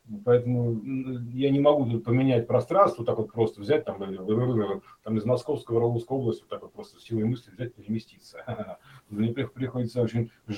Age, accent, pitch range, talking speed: 40-59, native, 115-160 Hz, 160 wpm